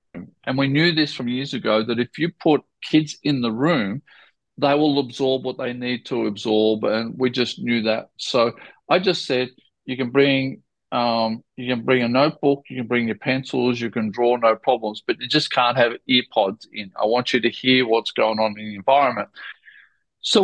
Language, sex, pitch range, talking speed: English, male, 120-145 Hz, 205 wpm